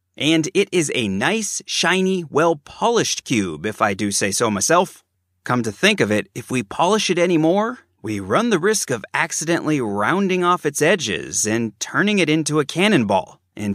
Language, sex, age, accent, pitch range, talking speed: English, male, 30-49, American, 120-190 Hz, 185 wpm